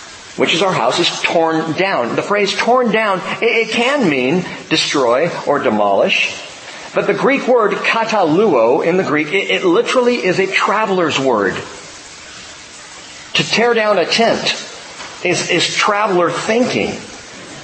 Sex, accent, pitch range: male, American, 160-235 Hz